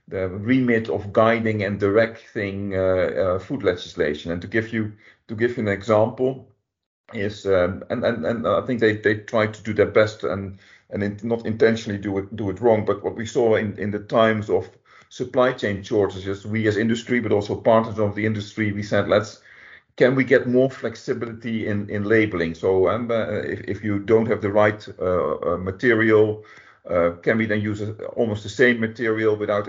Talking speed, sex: 200 wpm, male